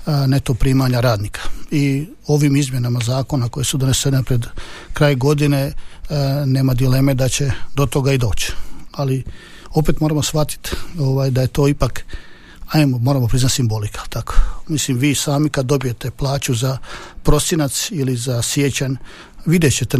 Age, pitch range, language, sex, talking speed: 50-69, 130-150 Hz, Croatian, male, 145 wpm